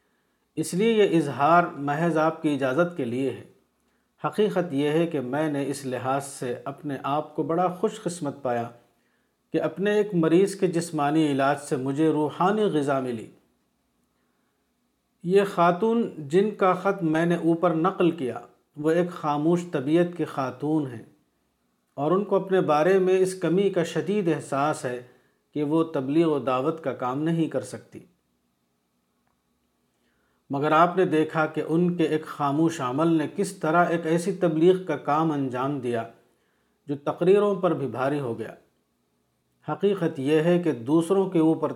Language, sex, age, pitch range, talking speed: Urdu, male, 50-69, 140-175 Hz, 160 wpm